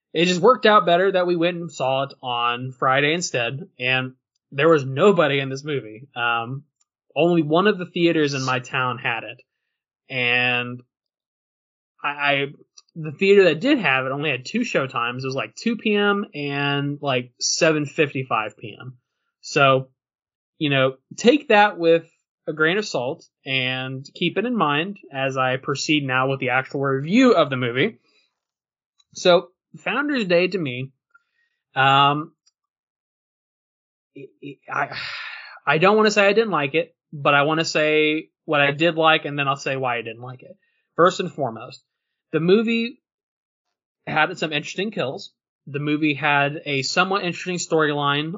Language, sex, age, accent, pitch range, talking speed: English, male, 20-39, American, 130-175 Hz, 165 wpm